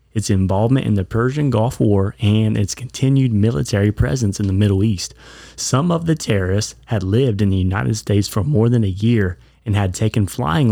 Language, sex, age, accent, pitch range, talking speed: English, male, 30-49, American, 100-125 Hz, 195 wpm